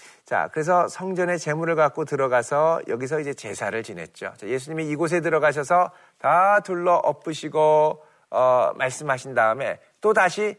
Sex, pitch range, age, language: male, 135-175 Hz, 40-59, Korean